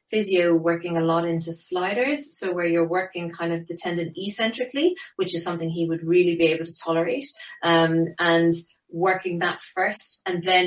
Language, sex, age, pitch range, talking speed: English, female, 30-49, 160-190 Hz, 180 wpm